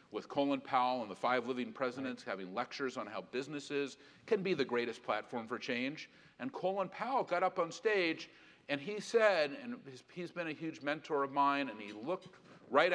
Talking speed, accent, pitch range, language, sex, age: 195 wpm, American, 125-185 Hz, English, male, 50-69